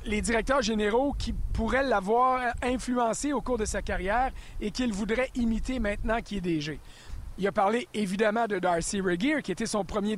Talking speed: 185 wpm